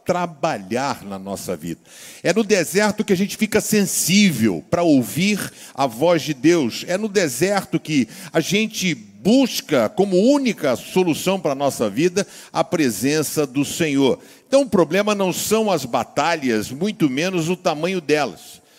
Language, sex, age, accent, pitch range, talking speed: Portuguese, male, 50-69, Brazilian, 150-200 Hz, 155 wpm